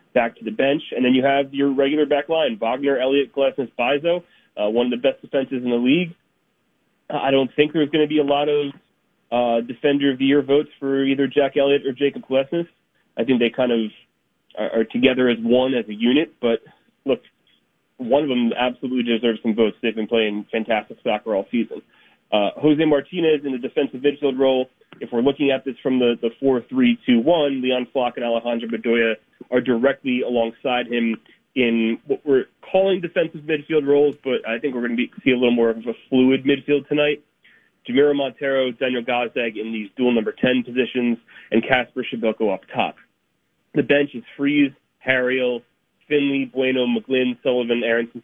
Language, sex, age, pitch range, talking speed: English, male, 30-49, 120-140 Hz, 185 wpm